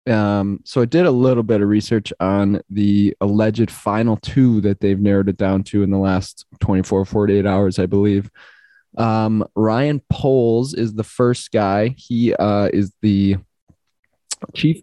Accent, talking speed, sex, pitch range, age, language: American, 160 wpm, male, 100-120 Hz, 20-39, English